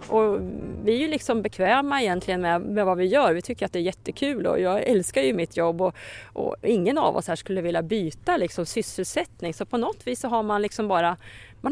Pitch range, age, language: 175-245 Hz, 30-49, Swedish